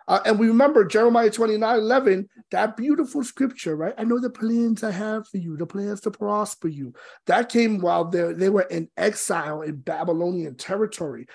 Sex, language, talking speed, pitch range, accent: male, English, 185 wpm, 180-225 Hz, American